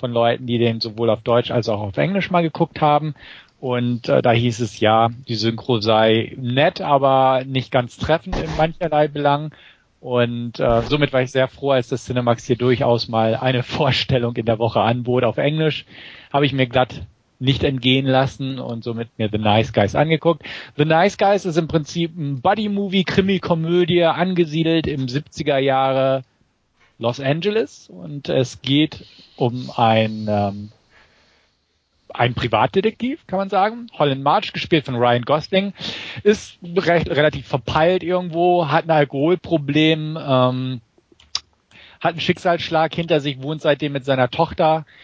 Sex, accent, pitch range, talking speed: male, German, 120-165 Hz, 155 wpm